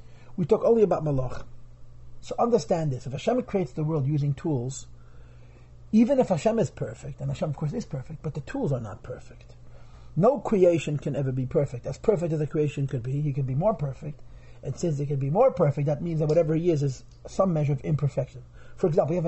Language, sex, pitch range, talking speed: English, male, 125-170 Hz, 225 wpm